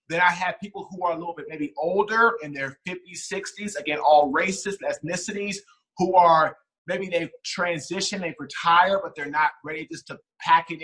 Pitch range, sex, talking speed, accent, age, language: 165-235 Hz, male, 190 wpm, American, 30-49, English